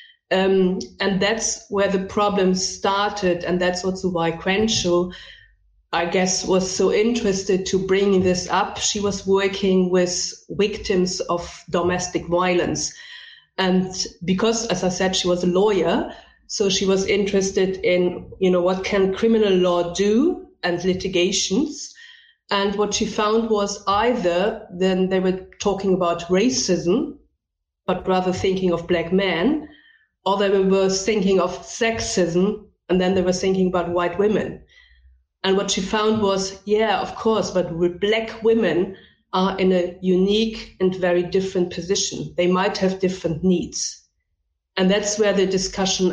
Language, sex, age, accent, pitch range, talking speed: English, female, 30-49, German, 180-205 Hz, 145 wpm